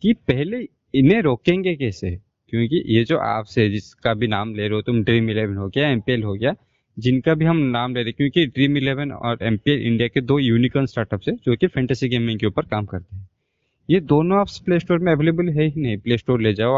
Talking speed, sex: 245 wpm, male